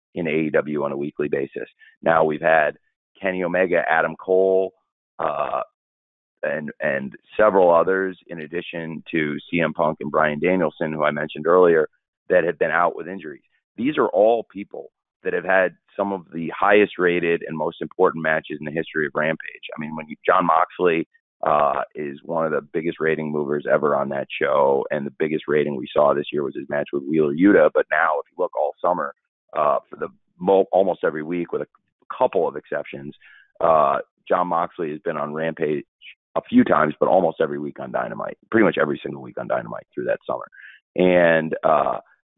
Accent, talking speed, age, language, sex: American, 195 wpm, 30-49, English, male